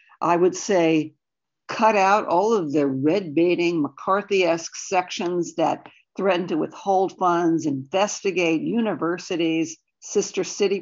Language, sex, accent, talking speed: English, female, American, 115 wpm